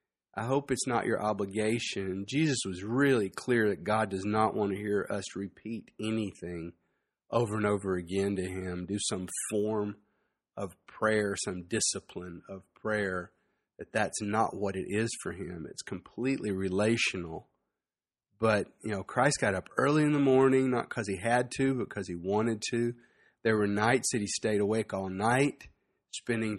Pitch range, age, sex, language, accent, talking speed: 105-130 Hz, 40-59, male, English, American, 170 wpm